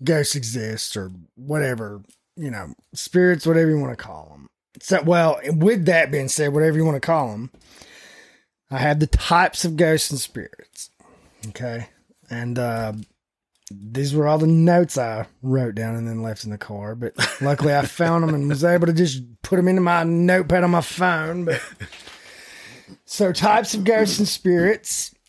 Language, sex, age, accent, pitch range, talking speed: English, male, 20-39, American, 140-180 Hz, 180 wpm